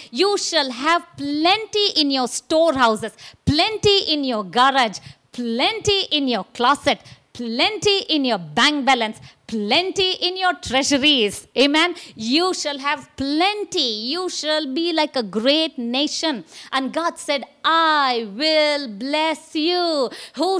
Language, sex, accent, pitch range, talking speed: English, female, Indian, 235-320 Hz, 130 wpm